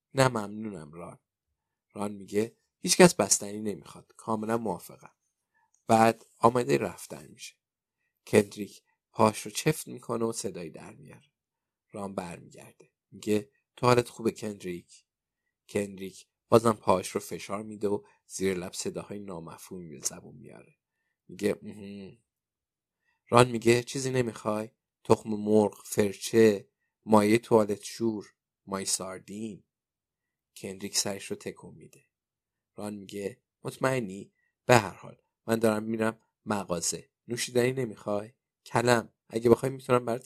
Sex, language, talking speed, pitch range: male, Persian, 115 wpm, 100-115 Hz